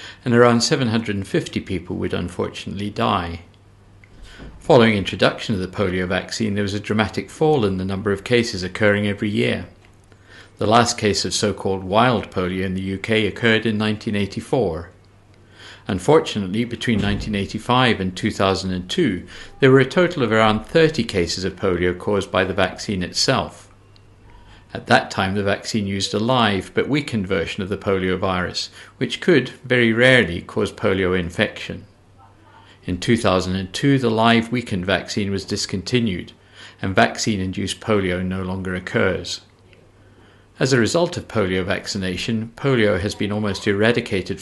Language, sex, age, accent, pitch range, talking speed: English, male, 50-69, British, 95-115 Hz, 140 wpm